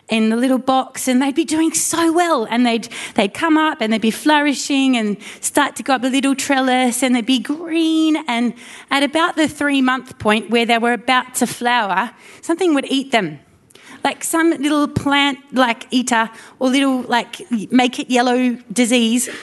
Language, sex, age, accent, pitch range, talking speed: English, female, 30-49, Australian, 230-285 Hz, 175 wpm